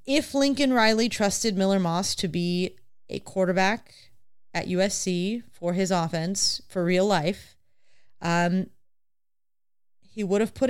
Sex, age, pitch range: female, 30-49, 170-200 Hz